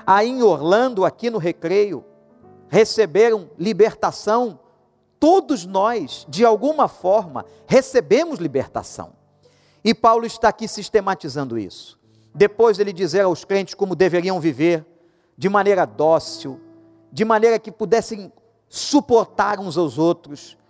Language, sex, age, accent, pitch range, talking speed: Portuguese, male, 50-69, Brazilian, 160-220 Hz, 115 wpm